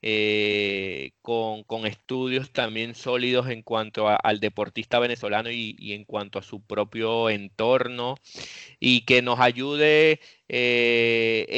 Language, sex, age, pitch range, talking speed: Spanish, male, 20-39, 110-125 Hz, 130 wpm